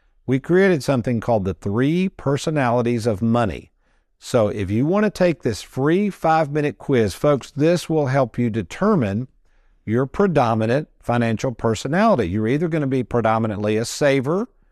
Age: 50-69